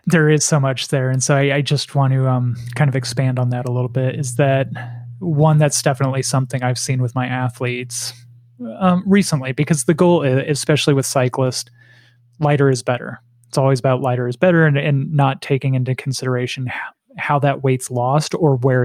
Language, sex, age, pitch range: English, male, 30-49, 130-150 Hz